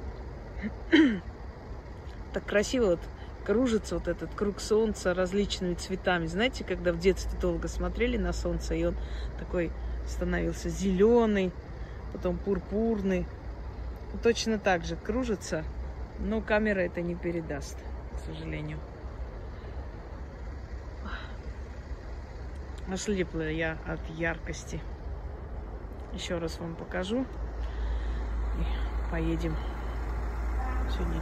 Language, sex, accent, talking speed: Russian, female, native, 90 wpm